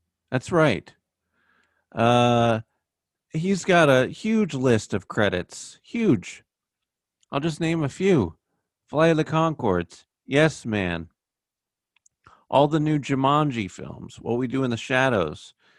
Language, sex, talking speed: English, male, 125 wpm